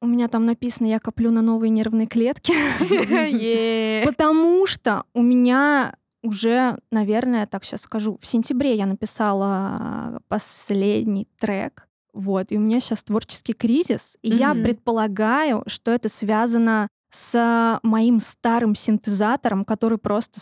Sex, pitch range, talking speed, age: female, 215-245 Hz, 130 wpm, 20-39